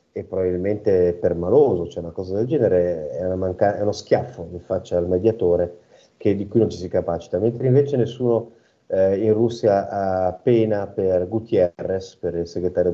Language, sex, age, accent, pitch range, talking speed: Italian, male, 30-49, native, 95-125 Hz, 185 wpm